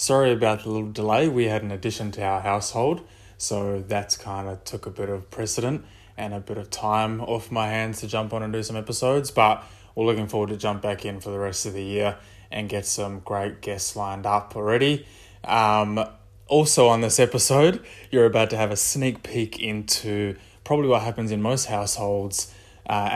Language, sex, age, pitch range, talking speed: English, male, 20-39, 105-115 Hz, 200 wpm